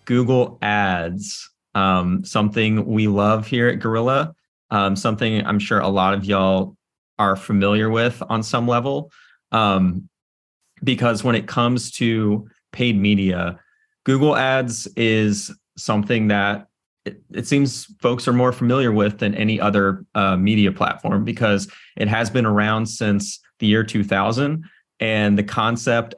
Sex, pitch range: male, 100-120 Hz